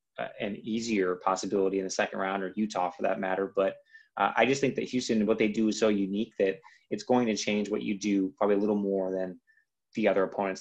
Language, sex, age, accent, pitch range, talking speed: English, male, 30-49, American, 95-115 Hz, 230 wpm